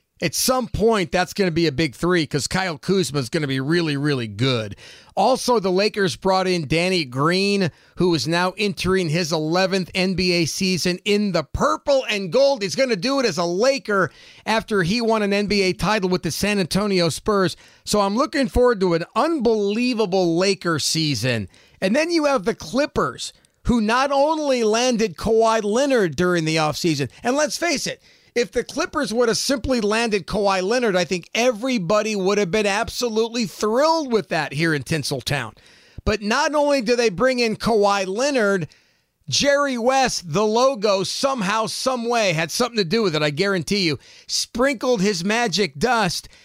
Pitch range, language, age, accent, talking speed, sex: 175-235 Hz, English, 40-59, American, 175 wpm, male